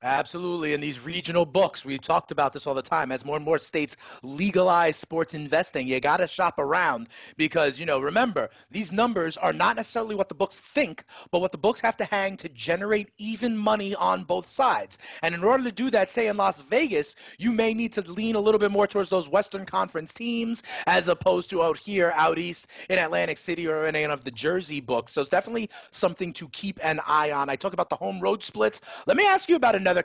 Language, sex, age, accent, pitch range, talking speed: English, male, 30-49, American, 160-215 Hz, 230 wpm